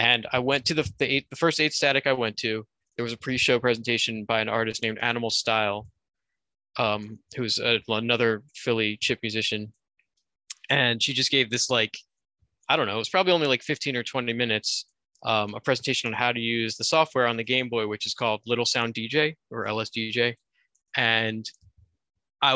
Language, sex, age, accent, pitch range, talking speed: English, male, 20-39, American, 110-130 Hz, 190 wpm